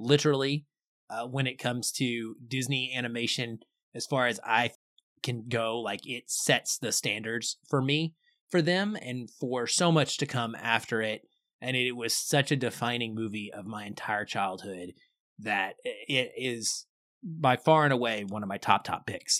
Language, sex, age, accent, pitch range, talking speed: English, male, 20-39, American, 115-150 Hz, 170 wpm